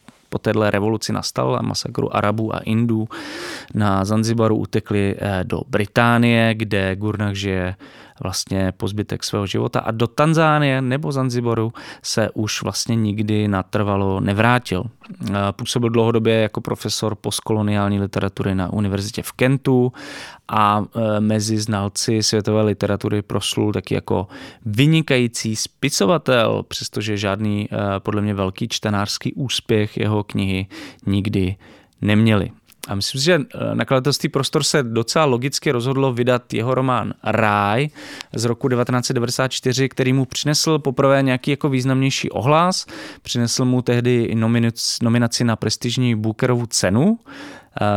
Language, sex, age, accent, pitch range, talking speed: Czech, male, 20-39, native, 105-125 Hz, 120 wpm